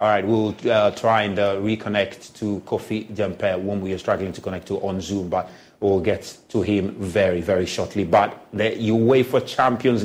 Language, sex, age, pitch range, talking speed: English, male, 30-49, 105-130 Hz, 195 wpm